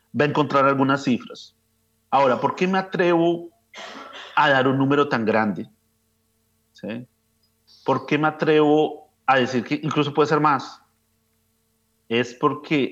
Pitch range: 110-145 Hz